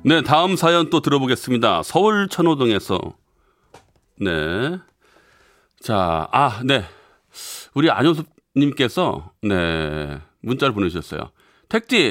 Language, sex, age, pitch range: Korean, male, 40-59, 100-165 Hz